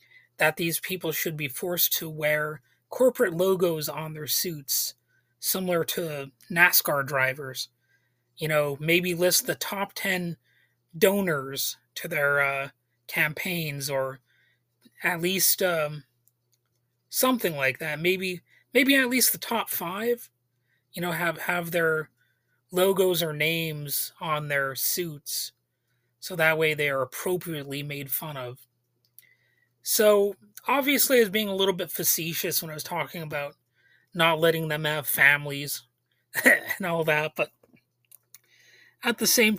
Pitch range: 130-180 Hz